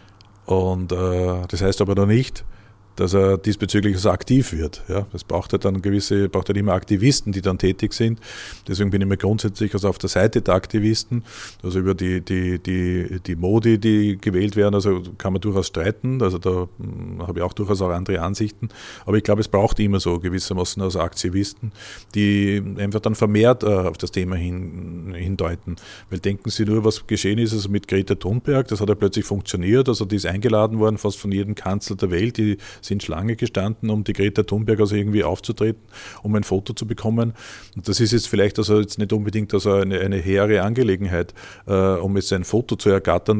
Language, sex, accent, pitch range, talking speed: German, male, Austrian, 95-110 Hz, 195 wpm